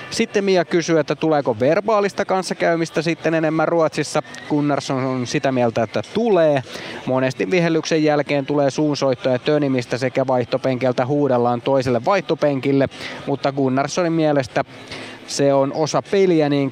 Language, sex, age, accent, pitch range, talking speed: Finnish, male, 30-49, native, 130-155 Hz, 125 wpm